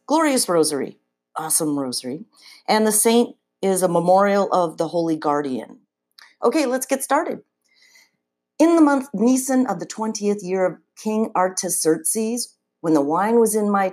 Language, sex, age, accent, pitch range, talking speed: English, female, 50-69, American, 145-220 Hz, 150 wpm